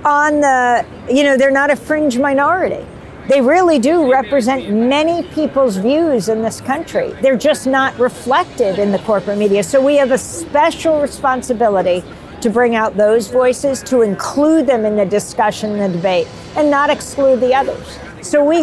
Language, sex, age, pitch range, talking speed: Hungarian, female, 50-69, 220-275 Hz, 175 wpm